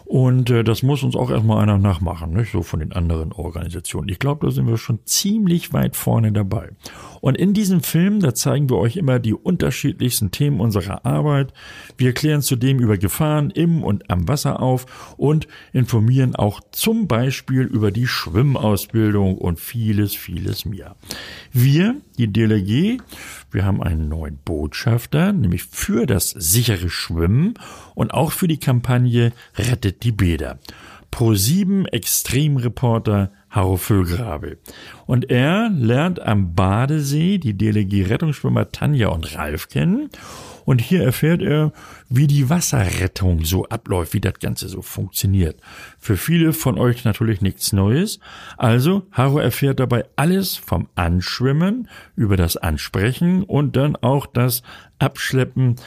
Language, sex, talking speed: German, male, 140 wpm